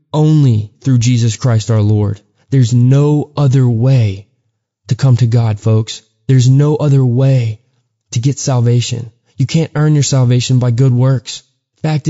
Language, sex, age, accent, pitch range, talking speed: English, male, 20-39, American, 120-145 Hz, 155 wpm